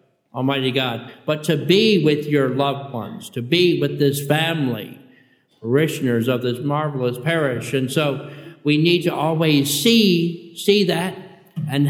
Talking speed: 145 wpm